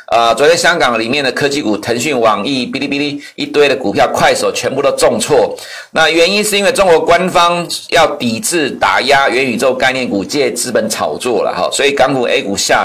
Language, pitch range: Chinese, 120-180 Hz